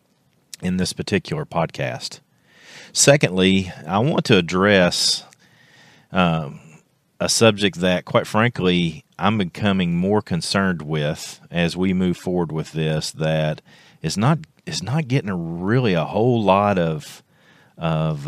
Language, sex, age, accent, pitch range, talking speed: English, male, 40-59, American, 85-120 Hz, 120 wpm